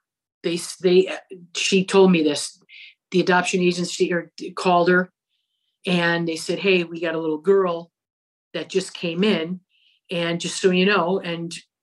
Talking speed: 150 wpm